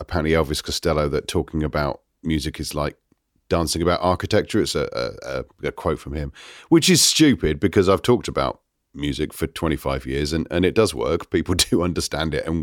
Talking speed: 190 wpm